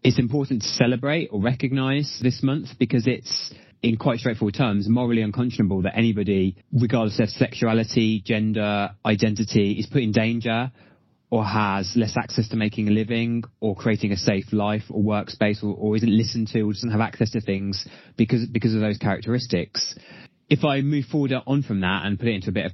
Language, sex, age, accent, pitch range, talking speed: English, male, 20-39, British, 100-120 Hz, 190 wpm